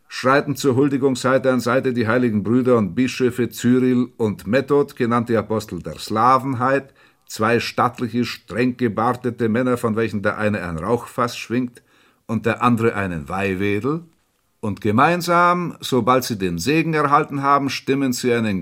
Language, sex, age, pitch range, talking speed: German, male, 50-69, 105-125 Hz, 150 wpm